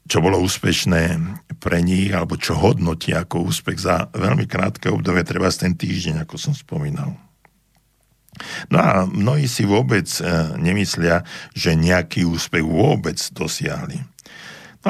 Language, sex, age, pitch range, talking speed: Slovak, male, 60-79, 85-125 Hz, 135 wpm